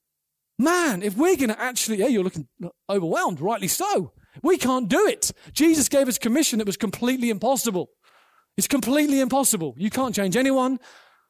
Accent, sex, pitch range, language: British, male, 160-235 Hz, English